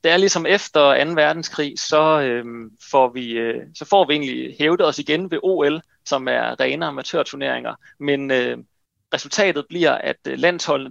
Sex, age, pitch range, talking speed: male, 30-49, 140-185 Hz, 150 wpm